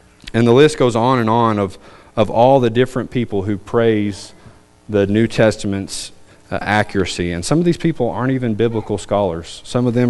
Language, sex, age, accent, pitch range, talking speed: English, male, 30-49, American, 95-130 Hz, 190 wpm